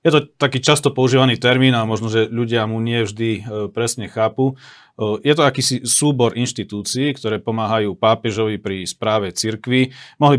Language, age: Slovak, 40-59